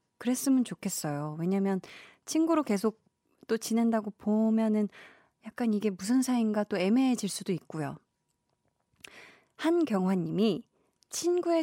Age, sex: 20-39, female